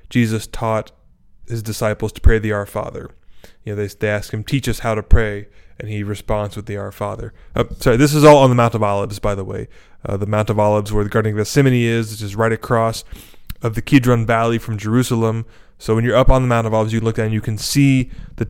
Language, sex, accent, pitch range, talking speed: English, male, American, 105-125 Hz, 250 wpm